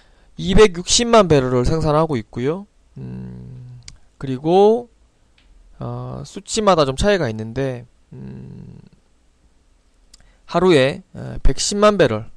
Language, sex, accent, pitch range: Korean, male, native, 120-180 Hz